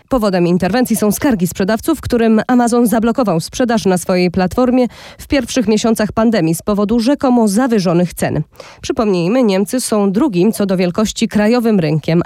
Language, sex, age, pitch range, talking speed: Polish, female, 20-39, 195-255 Hz, 145 wpm